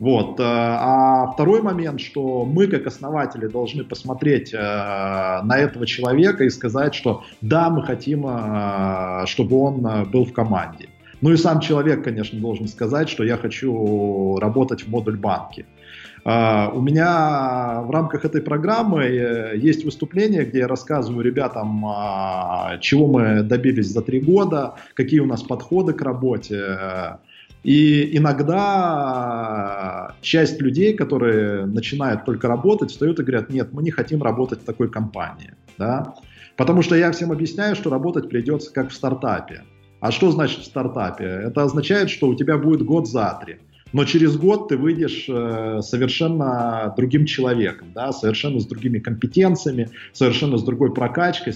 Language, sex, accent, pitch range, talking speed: Russian, male, native, 110-150 Hz, 140 wpm